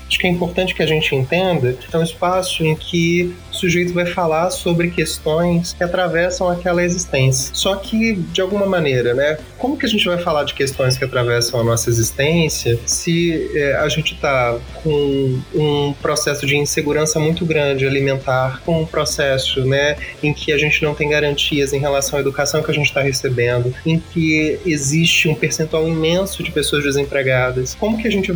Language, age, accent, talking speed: Portuguese, 20-39, Brazilian, 190 wpm